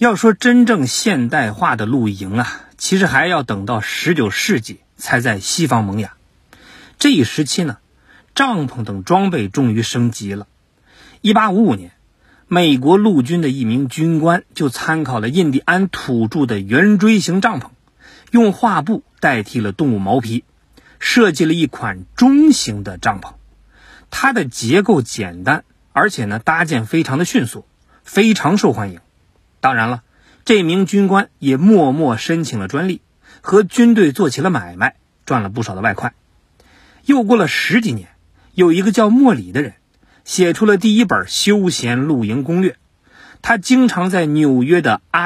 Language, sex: Chinese, male